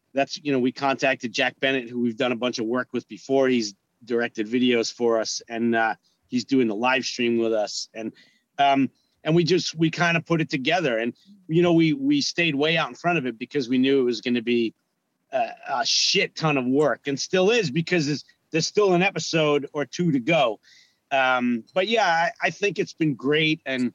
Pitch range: 125-165 Hz